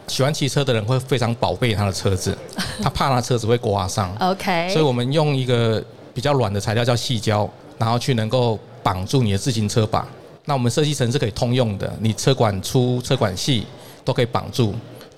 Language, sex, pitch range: Chinese, male, 110-135 Hz